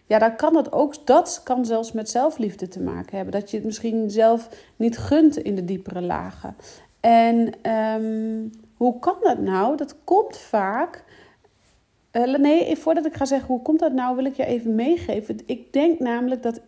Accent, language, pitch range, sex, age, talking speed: Dutch, Dutch, 205-255 Hz, female, 40-59, 185 wpm